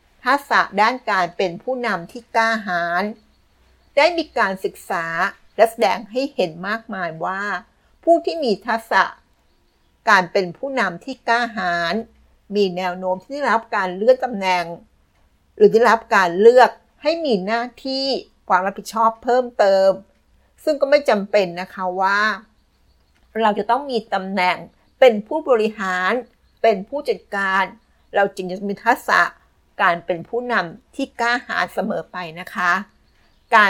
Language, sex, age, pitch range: Thai, female, 60-79, 185-235 Hz